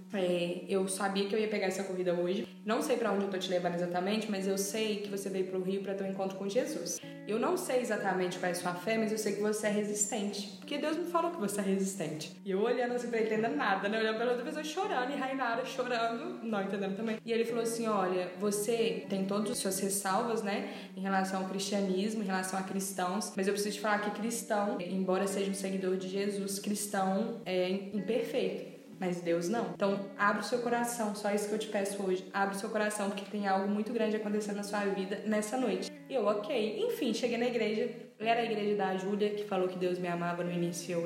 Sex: female